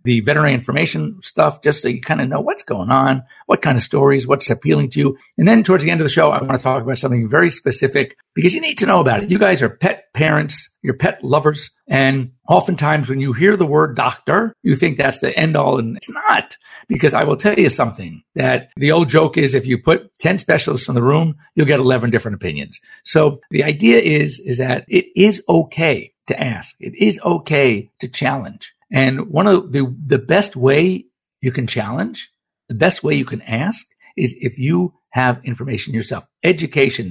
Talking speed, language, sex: 215 wpm, English, male